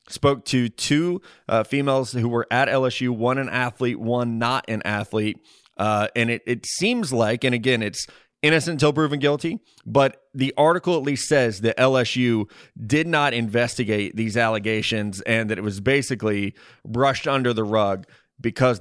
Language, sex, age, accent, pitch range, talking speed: English, male, 20-39, American, 115-140 Hz, 165 wpm